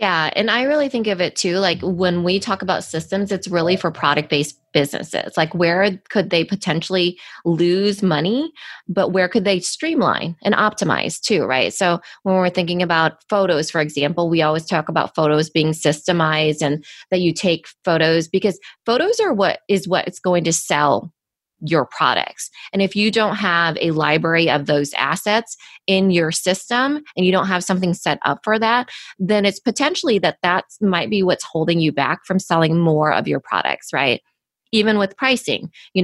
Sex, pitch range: female, 160-205 Hz